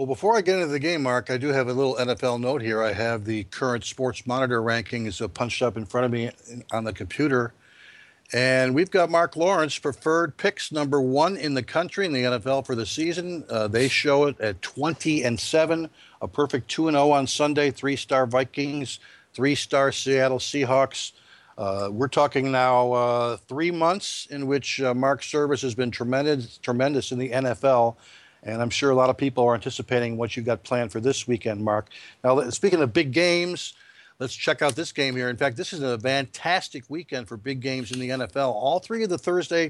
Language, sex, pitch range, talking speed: English, male, 120-145 Hz, 205 wpm